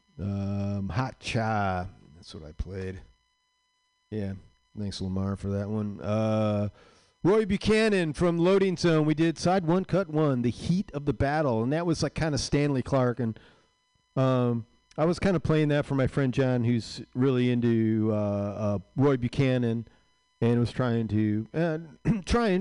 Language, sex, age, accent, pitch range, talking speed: English, male, 40-59, American, 110-170 Hz, 165 wpm